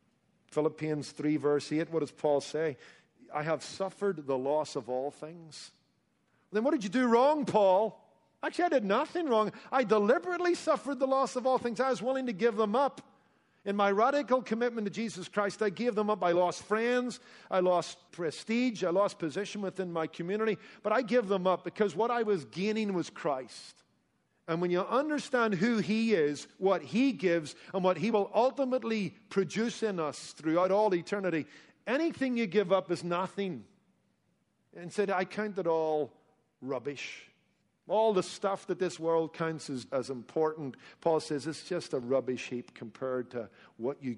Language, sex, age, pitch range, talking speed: English, male, 50-69, 155-225 Hz, 180 wpm